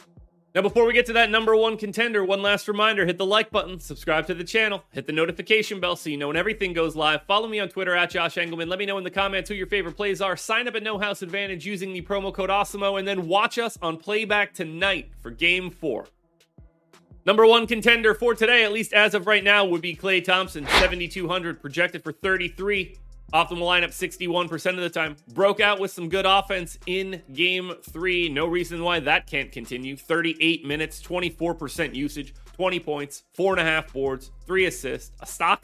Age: 30-49